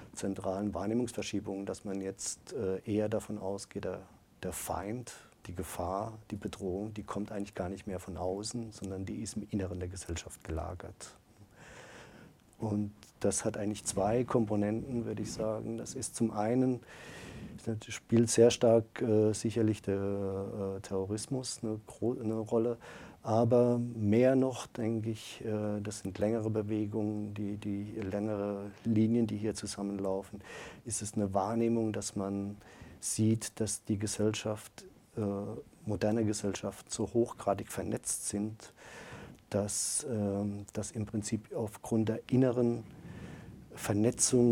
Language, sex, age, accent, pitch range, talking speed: German, male, 50-69, German, 100-110 Hz, 125 wpm